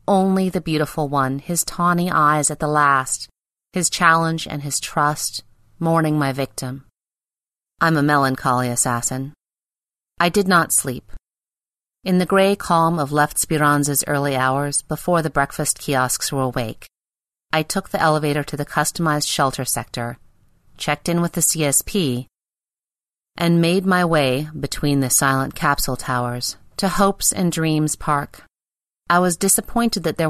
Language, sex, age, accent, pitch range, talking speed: English, female, 30-49, American, 130-170 Hz, 145 wpm